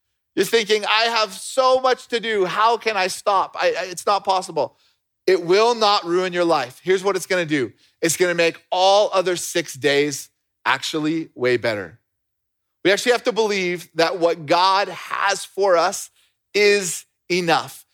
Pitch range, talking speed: 165-210 Hz, 175 wpm